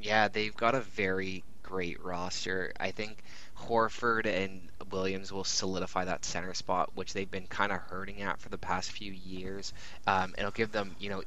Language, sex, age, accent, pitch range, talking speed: English, male, 20-39, American, 95-110 Hz, 185 wpm